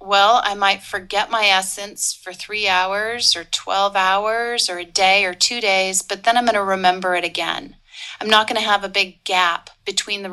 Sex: female